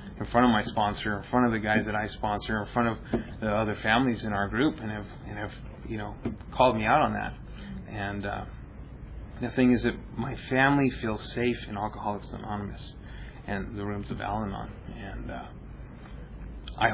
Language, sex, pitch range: English, male, 105-120 Hz